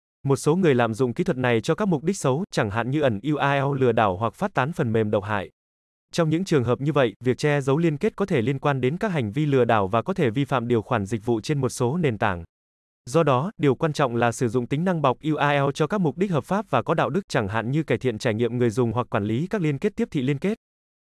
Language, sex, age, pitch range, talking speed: Vietnamese, male, 20-39, 120-160 Hz, 290 wpm